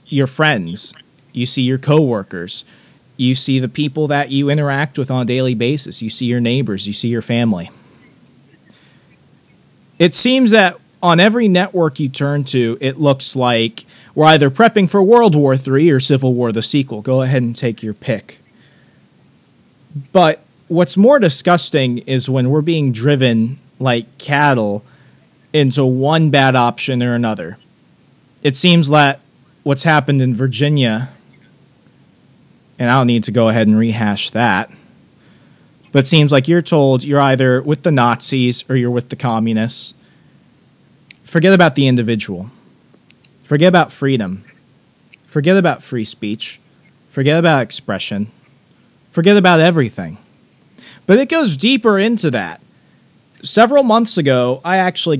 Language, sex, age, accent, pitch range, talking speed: English, male, 30-49, American, 125-155 Hz, 145 wpm